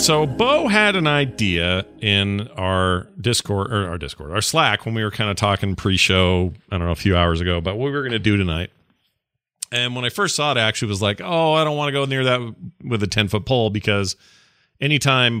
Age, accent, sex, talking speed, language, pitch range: 40-59, American, male, 235 wpm, English, 100-130 Hz